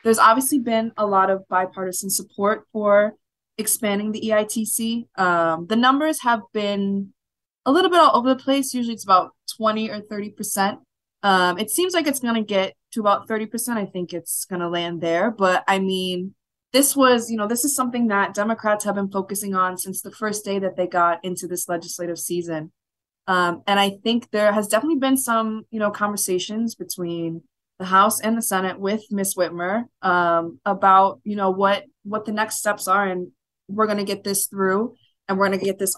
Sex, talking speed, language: female, 200 wpm, English